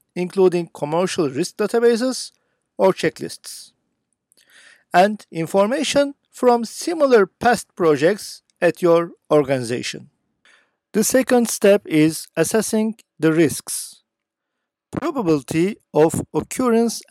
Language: Turkish